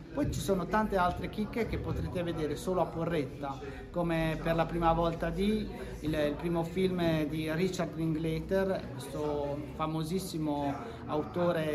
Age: 30-49